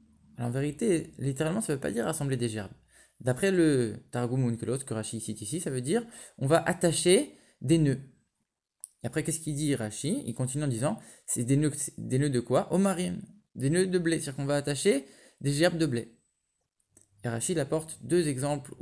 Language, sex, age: English, male, 20-39